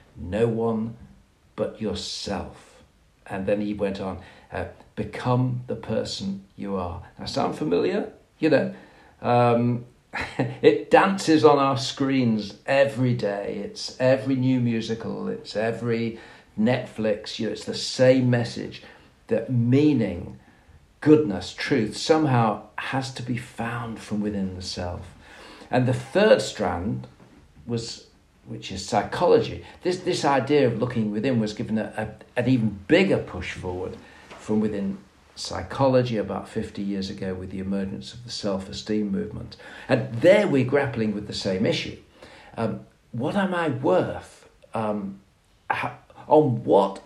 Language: English